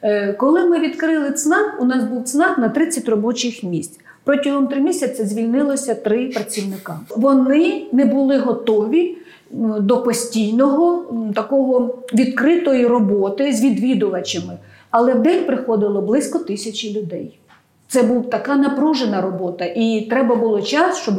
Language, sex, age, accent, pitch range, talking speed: Ukrainian, female, 40-59, native, 220-275 Hz, 125 wpm